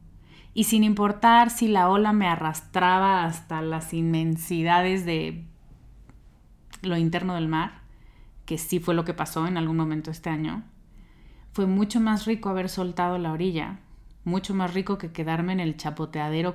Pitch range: 160-190 Hz